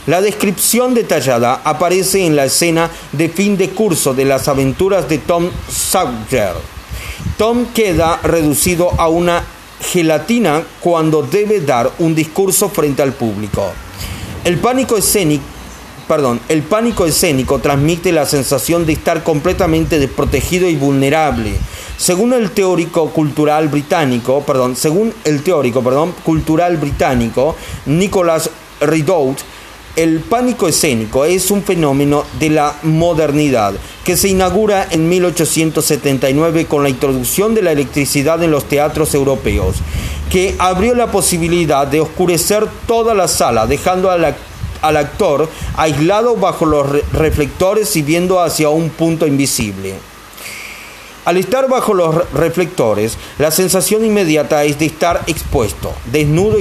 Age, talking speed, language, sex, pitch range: 40-59, 125 wpm, Spanish, male, 145-185 Hz